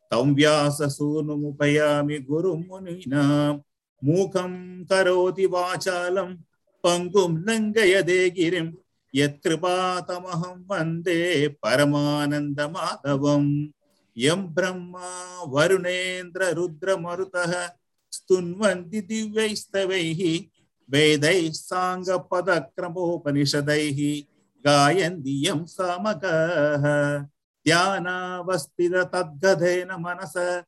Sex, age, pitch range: male, 50-69, 150-185 Hz